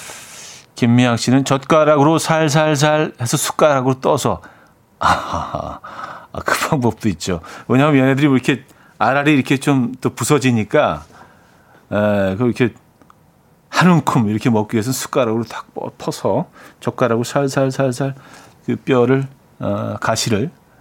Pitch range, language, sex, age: 115-155 Hz, Korean, male, 40-59